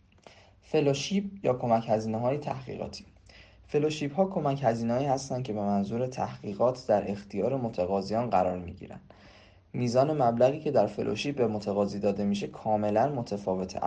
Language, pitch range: Persian, 100-130 Hz